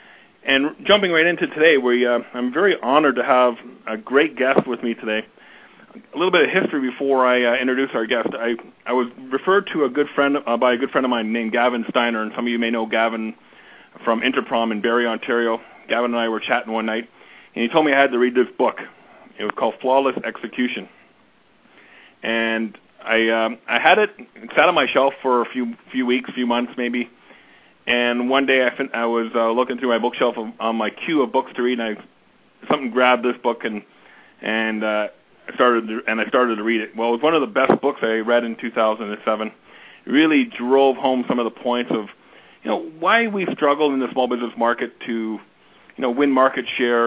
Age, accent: 40-59, American